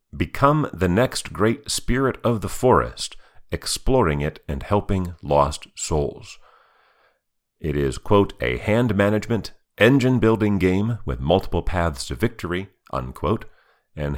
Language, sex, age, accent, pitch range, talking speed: English, male, 40-59, American, 80-115 Hz, 120 wpm